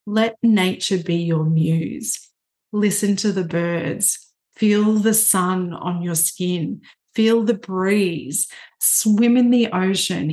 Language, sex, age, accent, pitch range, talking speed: English, female, 40-59, Australian, 175-215 Hz, 130 wpm